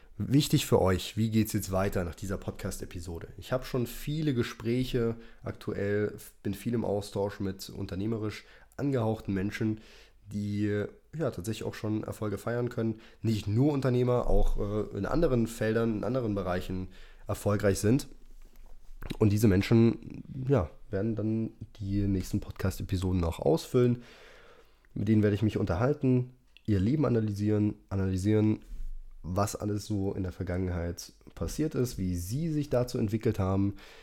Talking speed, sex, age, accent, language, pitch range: 145 wpm, male, 20-39, German, German, 100-120 Hz